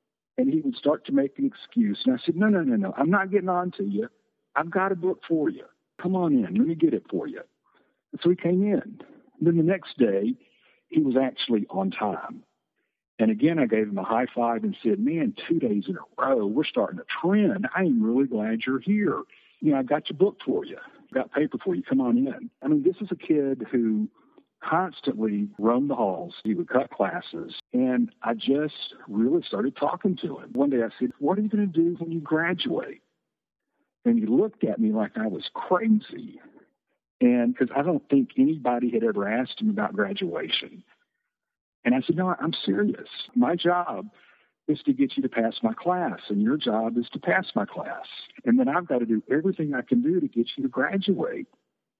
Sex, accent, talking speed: male, American, 215 wpm